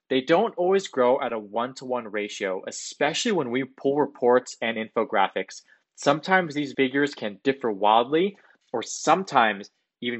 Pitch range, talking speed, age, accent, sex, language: 110-155 Hz, 140 wpm, 20-39, American, male, English